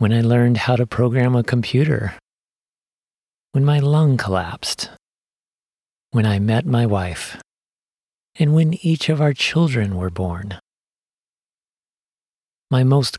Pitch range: 105-145 Hz